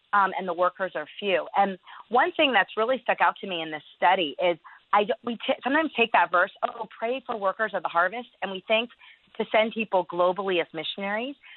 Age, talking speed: 40-59, 220 wpm